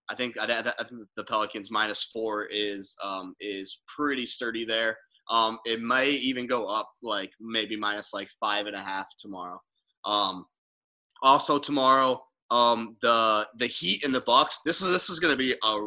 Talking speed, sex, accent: 170 wpm, male, American